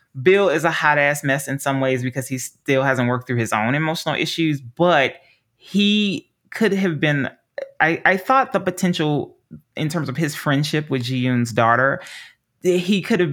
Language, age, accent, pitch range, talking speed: English, 30-49, American, 120-170 Hz, 175 wpm